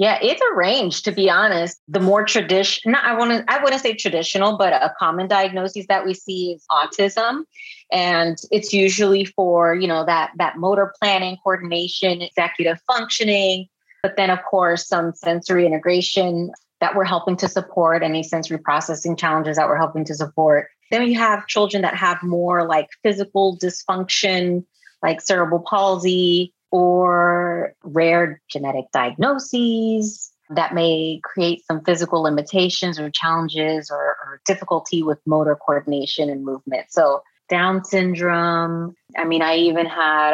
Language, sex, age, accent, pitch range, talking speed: English, female, 30-49, American, 160-190 Hz, 150 wpm